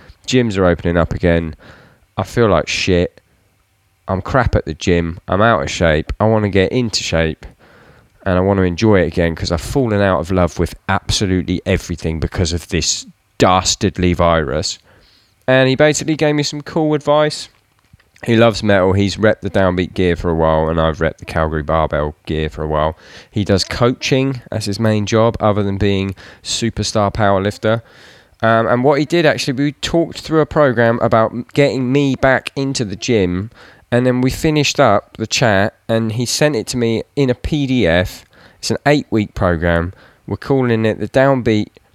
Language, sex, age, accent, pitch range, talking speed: English, male, 20-39, British, 90-120 Hz, 185 wpm